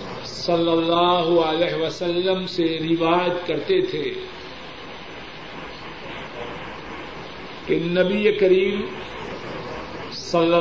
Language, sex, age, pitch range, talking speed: Urdu, male, 50-69, 170-205 Hz, 70 wpm